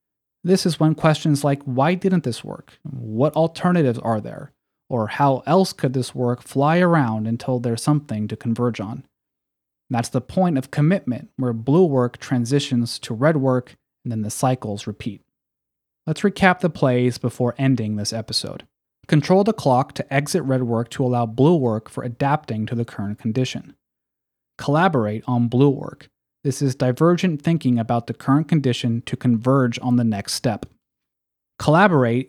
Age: 30-49